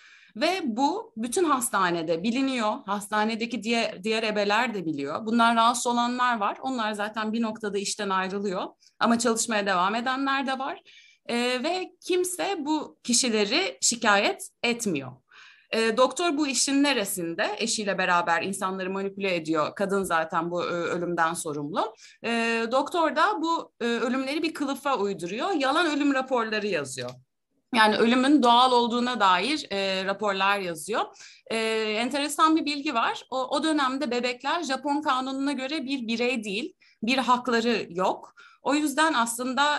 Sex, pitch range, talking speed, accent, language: female, 205-275 Hz, 140 wpm, native, Turkish